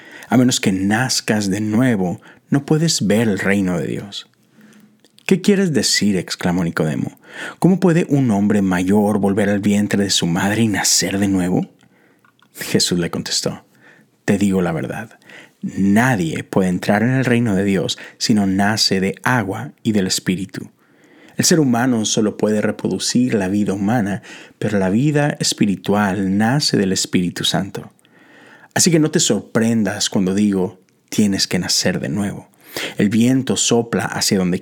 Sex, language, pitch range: male, Spanish, 95-140 Hz